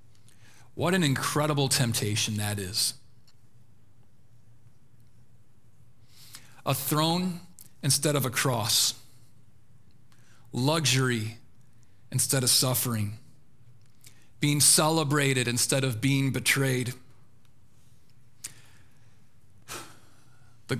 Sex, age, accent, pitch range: male, 40-59, American, 115-140 Hz